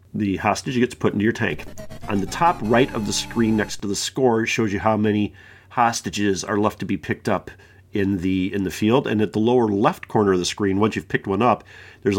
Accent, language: American, English